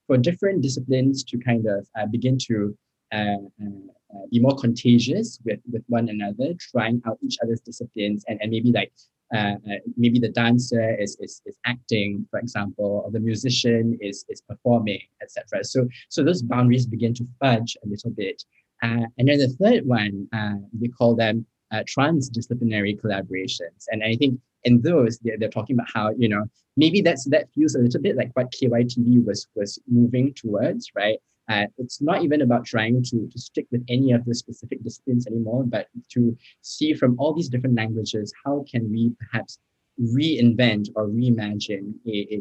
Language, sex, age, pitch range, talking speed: English, male, 20-39, 105-125 Hz, 180 wpm